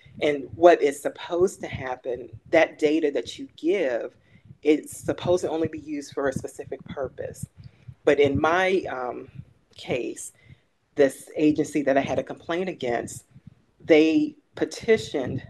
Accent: American